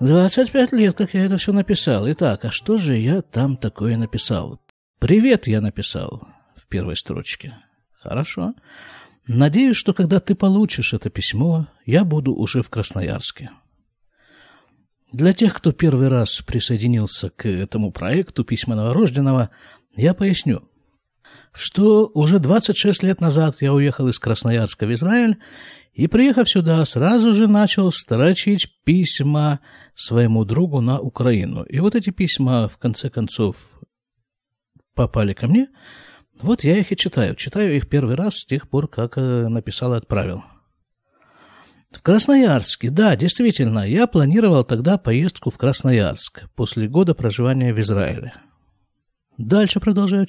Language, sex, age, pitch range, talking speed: Russian, male, 50-69, 115-190 Hz, 135 wpm